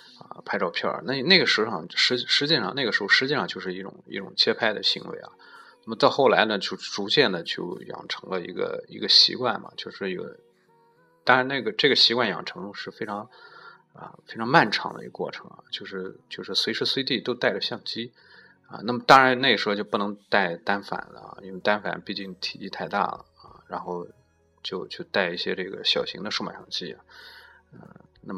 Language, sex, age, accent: Chinese, male, 20-39, native